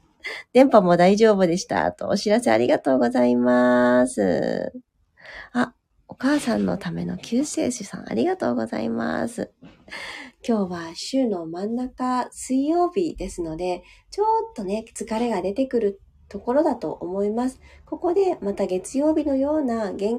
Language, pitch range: Japanese, 185-260 Hz